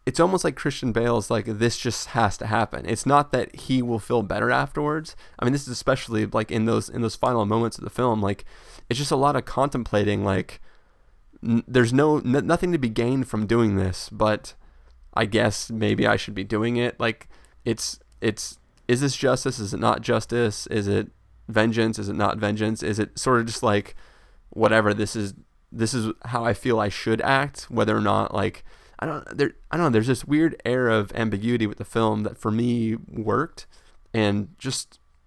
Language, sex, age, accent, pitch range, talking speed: English, male, 20-39, American, 105-125 Hz, 205 wpm